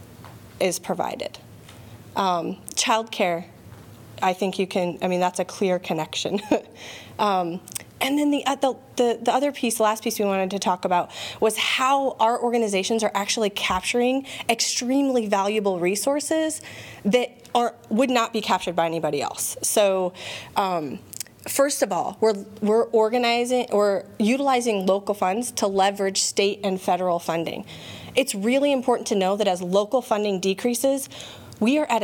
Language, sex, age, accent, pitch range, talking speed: English, female, 30-49, American, 180-230 Hz, 155 wpm